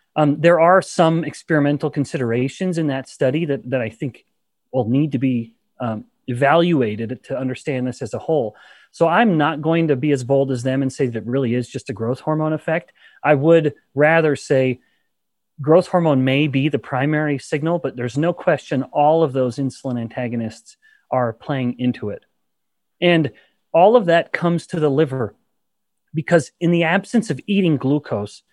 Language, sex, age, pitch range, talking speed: English, male, 30-49, 125-165 Hz, 175 wpm